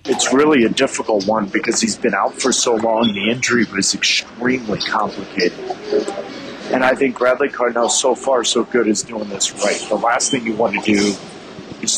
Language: English